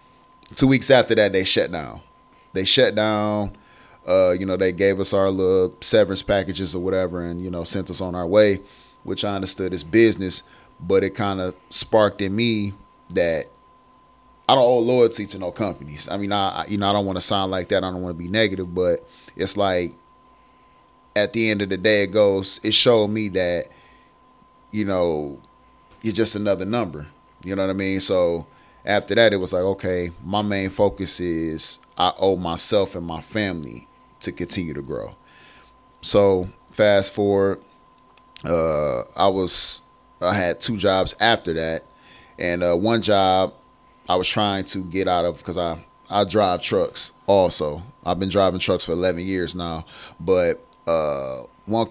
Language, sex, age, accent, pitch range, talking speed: English, male, 30-49, American, 90-105 Hz, 180 wpm